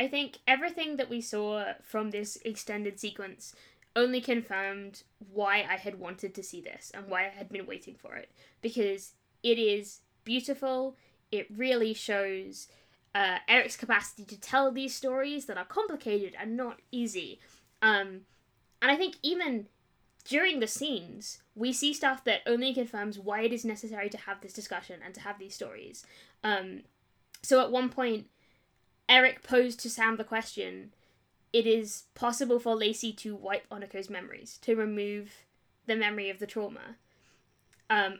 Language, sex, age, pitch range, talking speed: English, female, 10-29, 200-240 Hz, 160 wpm